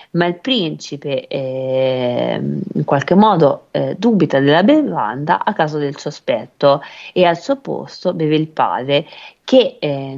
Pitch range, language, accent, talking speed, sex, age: 145-185 Hz, Italian, native, 140 wpm, female, 30-49